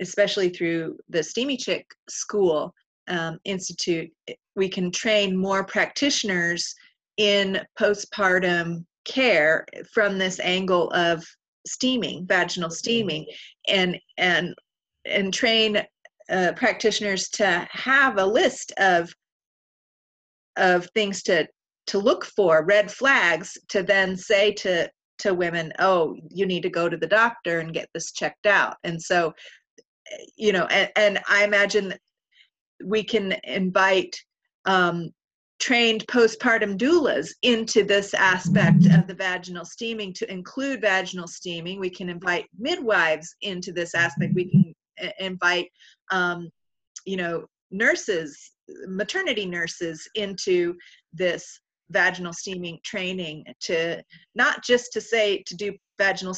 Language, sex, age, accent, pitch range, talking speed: English, female, 30-49, American, 175-215 Hz, 125 wpm